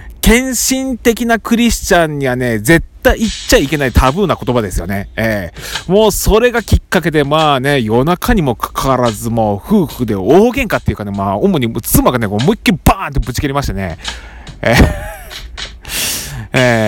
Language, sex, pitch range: Japanese, male, 95-155 Hz